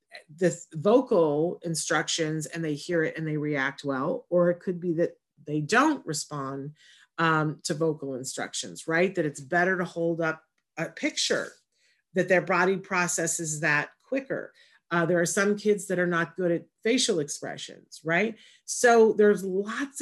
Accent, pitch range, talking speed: American, 160-190 Hz, 160 wpm